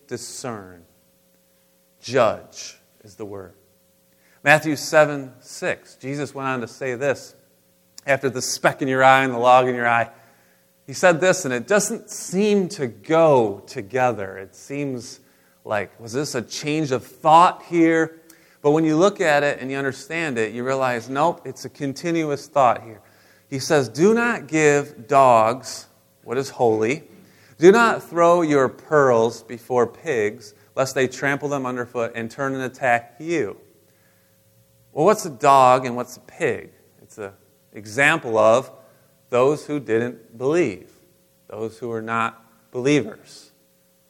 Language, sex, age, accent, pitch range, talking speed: English, male, 30-49, American, 100-140 Hz, 150 wpm